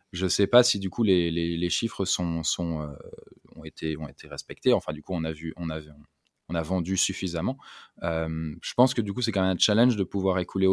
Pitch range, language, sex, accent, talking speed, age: 85-110 Hz, French, male, French, 255 wpm, 20-39